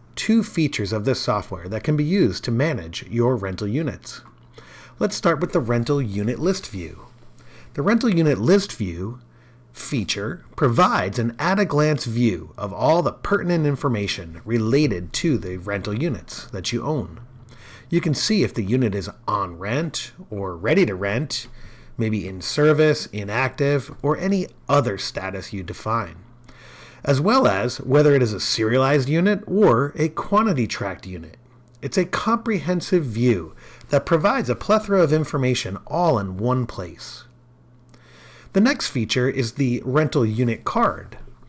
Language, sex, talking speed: English, male, 155 wpm